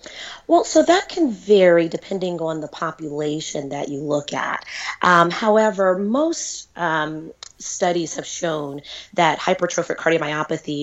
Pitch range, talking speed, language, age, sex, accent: 150-180 Hz, 125 wpm, English, 30-49, female, American